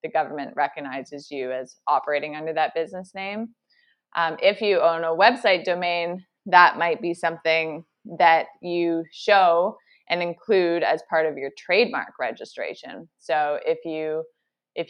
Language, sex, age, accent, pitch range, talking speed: English, female, 20-39, American, 155-175 Hz, 145 wpm